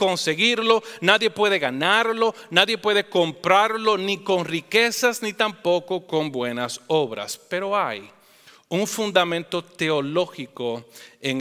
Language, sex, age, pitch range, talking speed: English, male, 40-59, 160-220 Hz, 110 wpm